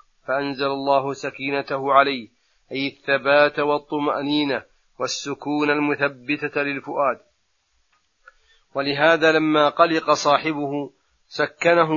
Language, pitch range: Arabic, 140-155 Hz